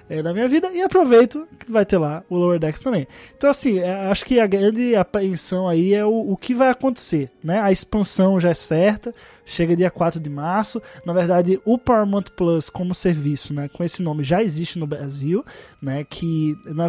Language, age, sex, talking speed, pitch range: Portuguese, 20-39, male, 200 wpm, 170-220 Hz